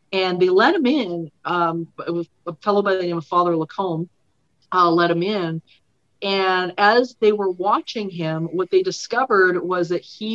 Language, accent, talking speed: English, American, 185 wpm